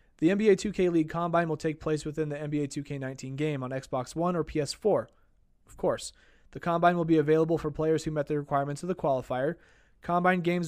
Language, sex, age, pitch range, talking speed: English, male, 20-39, 145-170 Hz, 200 wpm